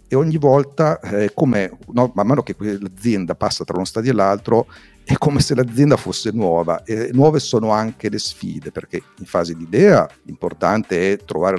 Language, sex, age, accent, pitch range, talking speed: Italian, male, 50-69, native, 90-115 Hz, 180 wpm